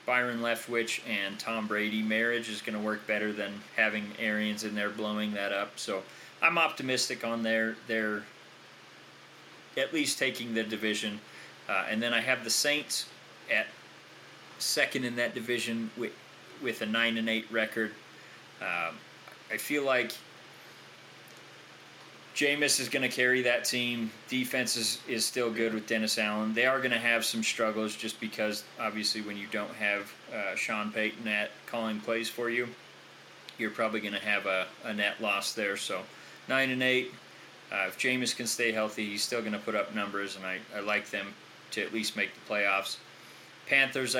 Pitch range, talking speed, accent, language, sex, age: 105-120 Hz, 175 wpm, American, English, male, 30-49